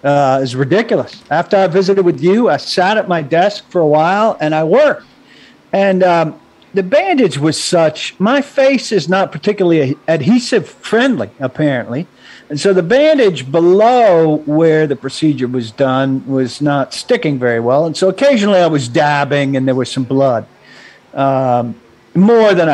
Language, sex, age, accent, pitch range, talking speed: English, male, 50-69, American, 130-185 Hz, 165 wpm